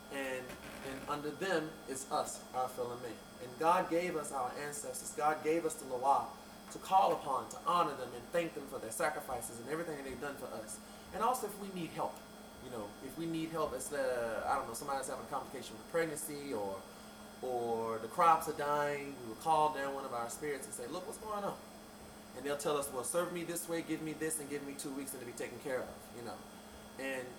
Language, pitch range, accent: English, 135-165 Hz, American